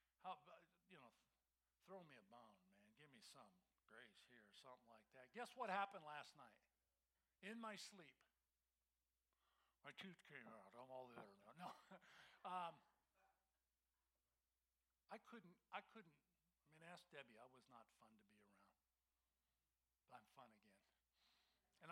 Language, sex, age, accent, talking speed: English, male, 60-79, American, 150 wpm